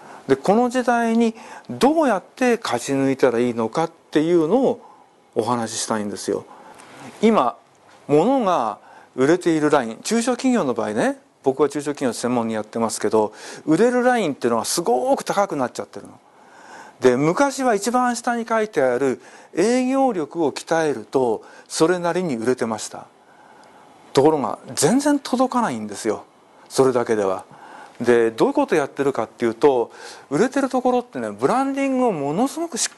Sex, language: male, Japanese